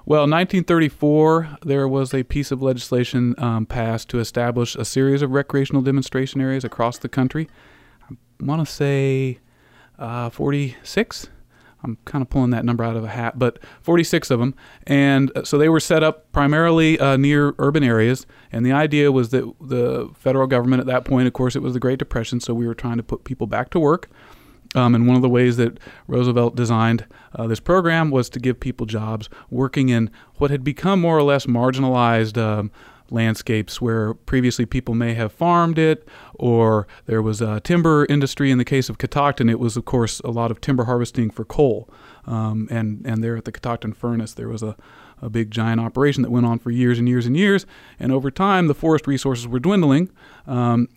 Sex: male